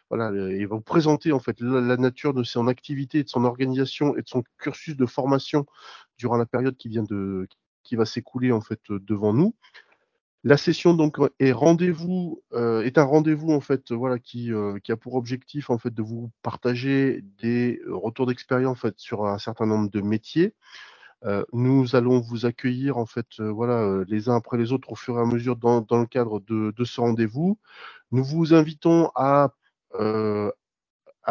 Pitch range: 115-140 Hz